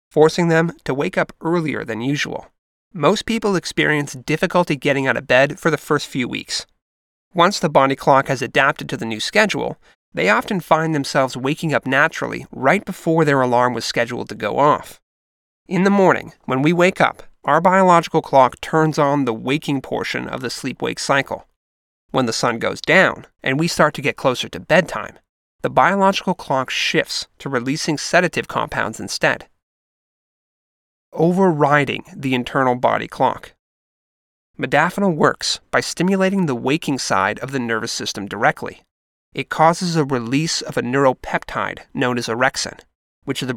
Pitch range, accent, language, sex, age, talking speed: 125-165 Hz, American, English, male, 30-49, 160 wpm